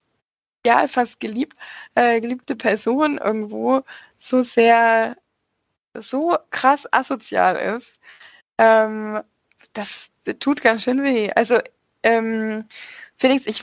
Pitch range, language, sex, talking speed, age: 230-310 Hz, German, female, 105 wpm, 20-39